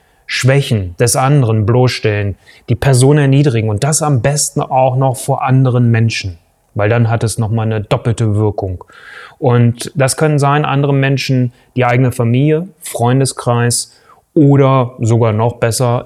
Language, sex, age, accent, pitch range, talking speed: German, male, 30-49, German, 115-150 Hz, 140 wpm